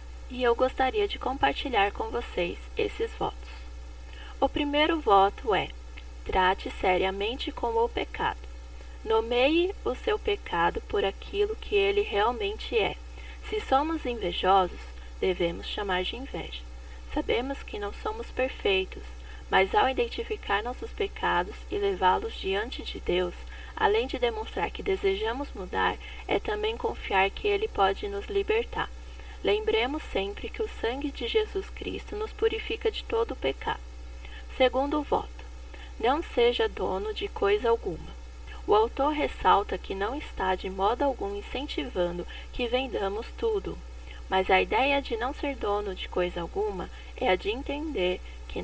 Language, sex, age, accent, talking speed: Portuguese, female, 20-39, Brazilian, 140 wpm